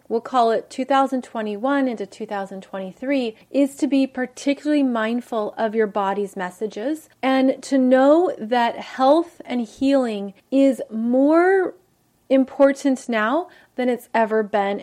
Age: 30-49